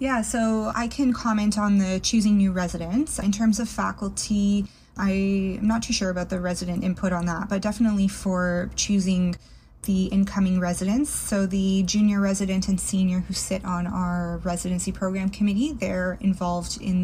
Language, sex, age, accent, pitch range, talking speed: English, female, 20-39, American, 180-200 Hz, 165 wpm